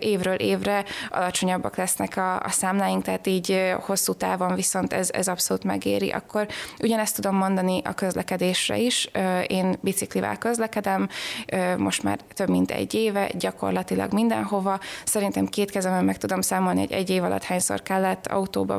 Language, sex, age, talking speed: Hungarian, female, 20-39, 150 wpm